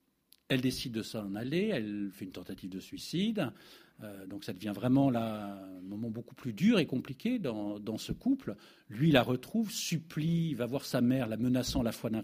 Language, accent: French, French